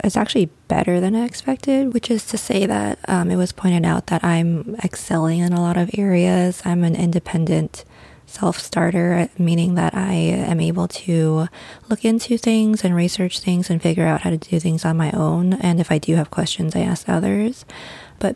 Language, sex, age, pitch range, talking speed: English, female, 20-39, 170-215 Hz, 195 wpm